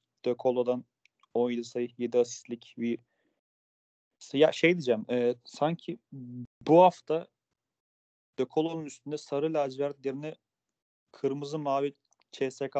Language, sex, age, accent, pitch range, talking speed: Turkish, male, 30-49, native, 120-145 Hz, 100 wpm